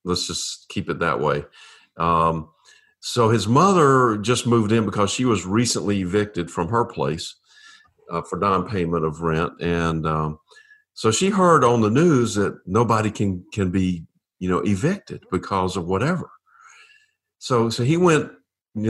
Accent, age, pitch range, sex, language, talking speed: American, 50-69, 100-150 Hz, male, English, 160 wpm